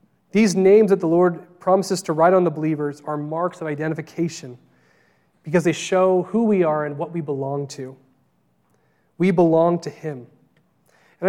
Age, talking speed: 30-49, 165 wpm